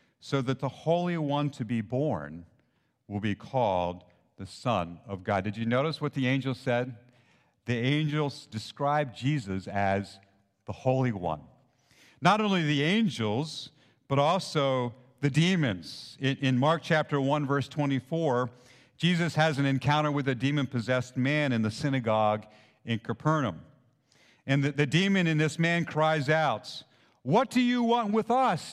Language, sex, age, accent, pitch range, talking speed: English, male, 50-69, American, 120-155 Hz, 150 wpm